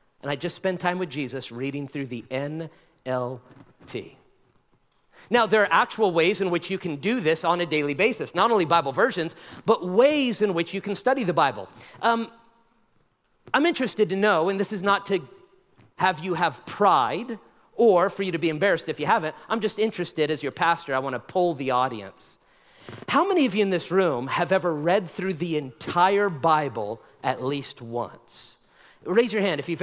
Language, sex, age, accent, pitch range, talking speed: English, male, 40-59, American, 150-205 Hz, 195 wpm